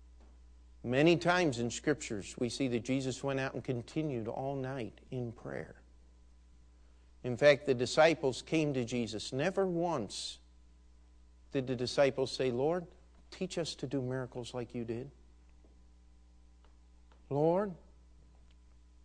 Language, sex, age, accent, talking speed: English, male, 50-69, American, 125 wpm